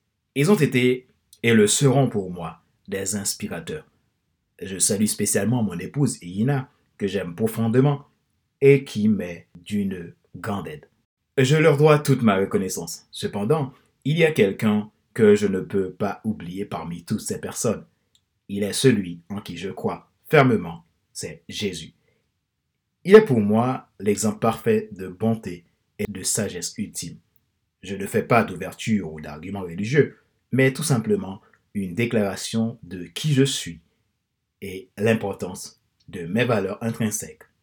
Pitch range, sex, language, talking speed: 100-130 Hz, male, French, 145 wpm